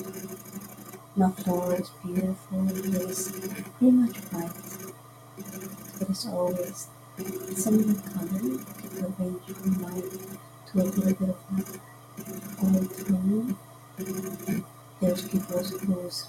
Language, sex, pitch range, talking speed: English, female, 185-200 Hz, 120 wpm